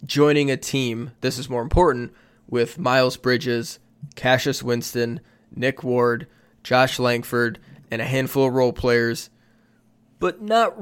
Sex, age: male, 20-39